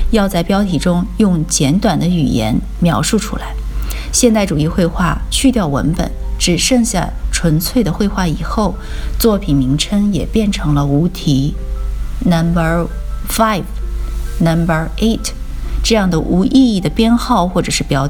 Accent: native